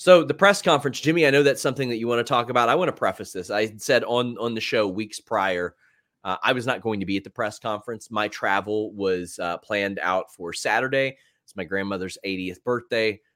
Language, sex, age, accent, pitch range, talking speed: English, male, 30-49, American, 105-135 Hz, 235 wpm